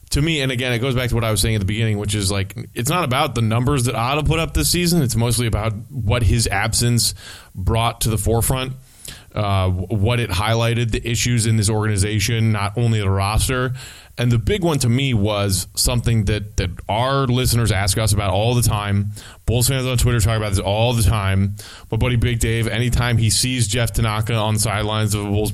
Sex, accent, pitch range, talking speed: male, American, 105-130 Hz, 225 wpm